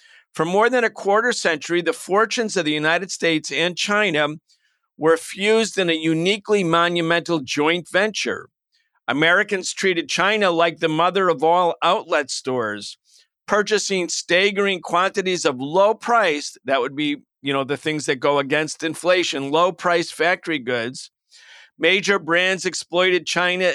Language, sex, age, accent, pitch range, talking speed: English, male, 50-69, American, 155-190 Hz, 140 wpm